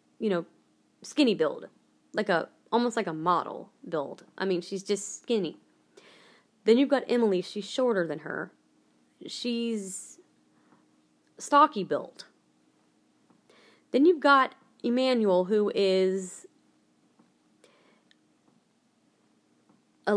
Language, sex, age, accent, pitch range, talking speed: English, female, 20-39, American, 185-235 Hz, 100 wpm